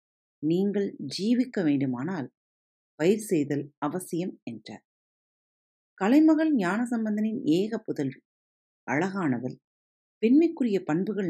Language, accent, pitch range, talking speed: Tamil, native, 135-230 Hz, 80 wpm